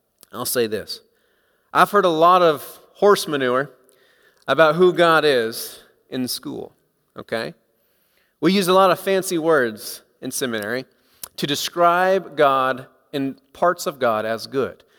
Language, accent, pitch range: English, American, 140-205 Hz